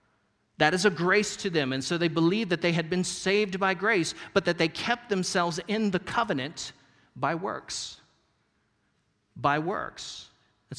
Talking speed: 165 wpm